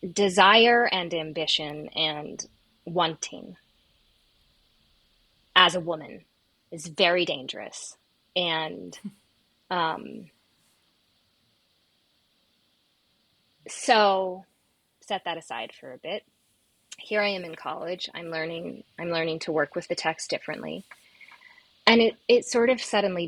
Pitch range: 160-210 Hz